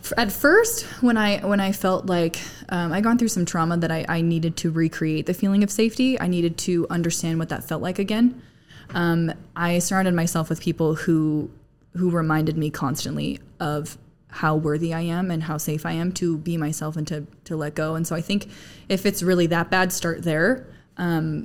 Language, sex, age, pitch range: English, female, 20-39, 160-180 Hz